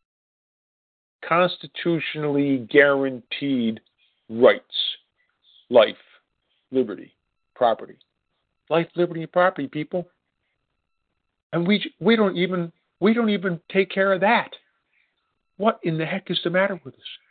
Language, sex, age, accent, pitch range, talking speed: English, male, 50-69, American, 150-190 Hz, 110 wpm